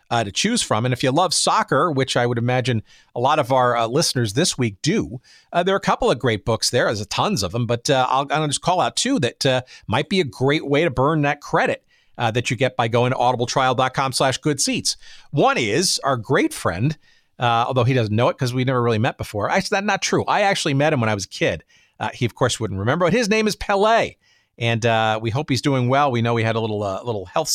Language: English